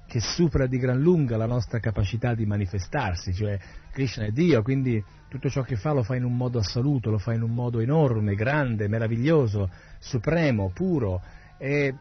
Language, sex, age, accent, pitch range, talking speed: Italian, male, 40-59, native, 115-145 Hz, 180 wpm